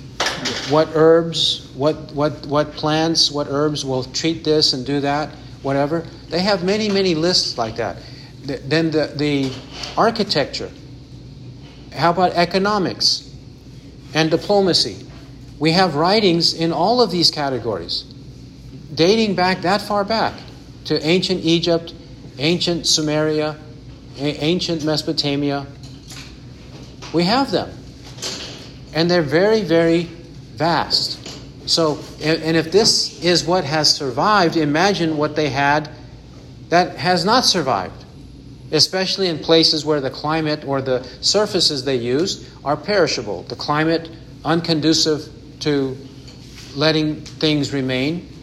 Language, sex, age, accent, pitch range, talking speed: English, male, 50-69, American, 135-165 Hz, 120 wpm